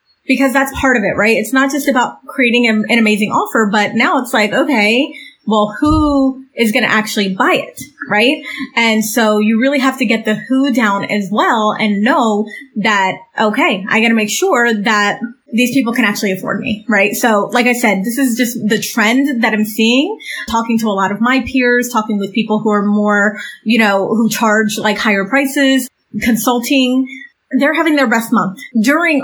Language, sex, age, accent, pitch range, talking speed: English, female, 30-49, American, 215-265 Hz, 195 wpm